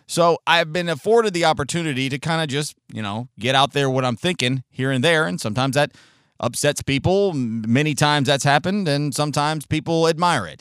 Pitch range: 115-150 Hz